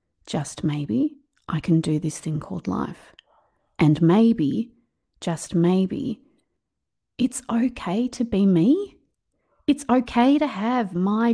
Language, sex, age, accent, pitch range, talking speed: English, female, 30-49, Australian, 180-255 Hz, 120 wpm